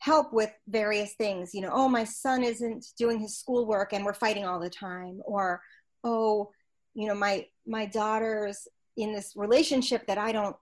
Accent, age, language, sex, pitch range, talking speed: American, 30-49, English, female, 205-260 Hz, 180 wpm